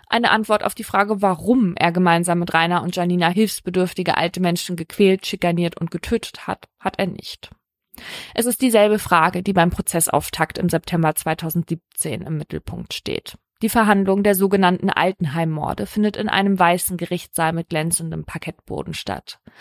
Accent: German